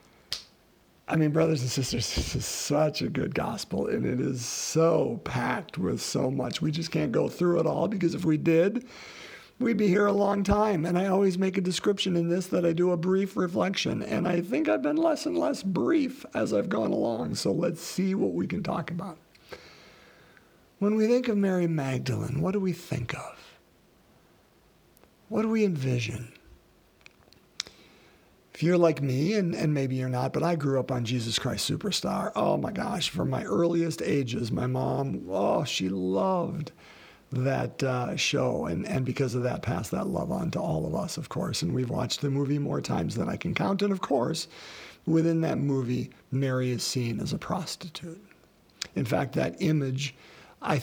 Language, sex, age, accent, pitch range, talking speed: English, male, 50-69, American, 135-190 Hz, 190 wpm